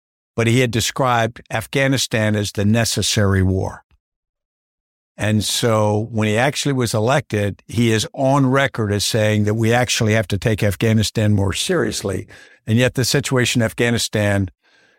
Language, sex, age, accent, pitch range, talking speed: English, male, 60-79, American, 100-120 Hz, 150 wpm